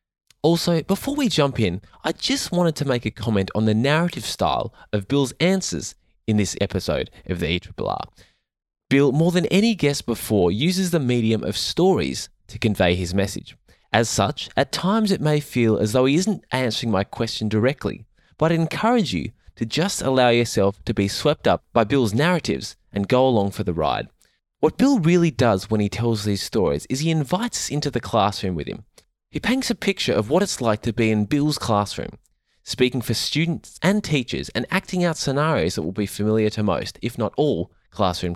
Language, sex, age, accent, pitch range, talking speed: English, male, 20-39, Australian, 100-155 Hz, 195 wpm